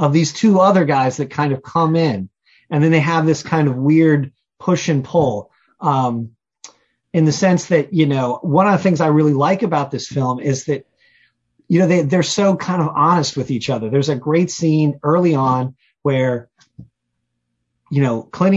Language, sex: English, male